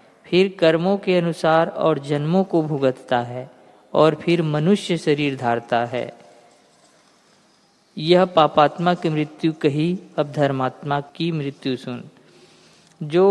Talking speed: 115 wpm